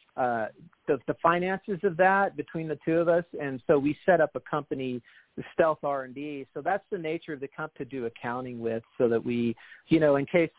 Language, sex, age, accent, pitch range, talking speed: English, male, 40-59, American, 130-165 Hz, 220 wpm